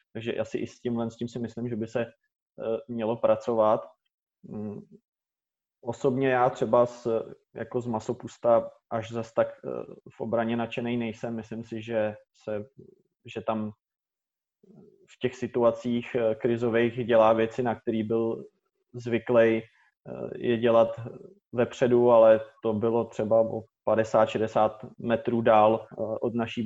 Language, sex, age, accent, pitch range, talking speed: Czech, male, 20-39, native, 110-120 Hz, 130 wpm